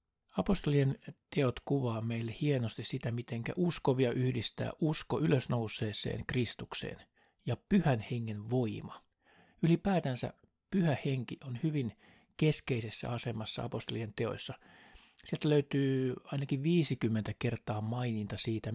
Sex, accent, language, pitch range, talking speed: male, native, Finnish, 115-145 Hz, 100 wpm